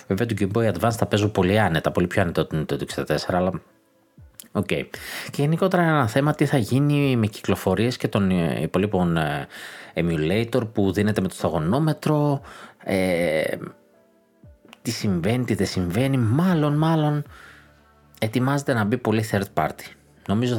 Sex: male